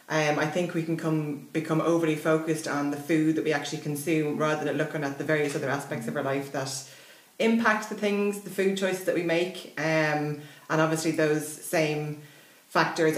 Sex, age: female, 30-49